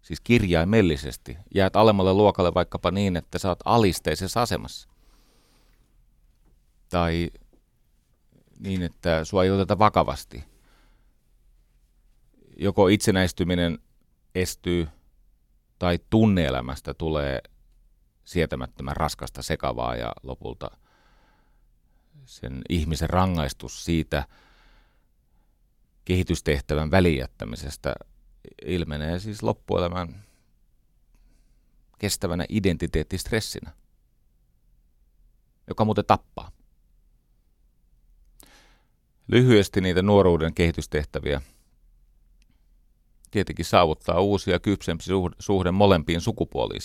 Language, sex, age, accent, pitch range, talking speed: Finnish, male, 40-59, native, 75-95 Hz, 70 wpm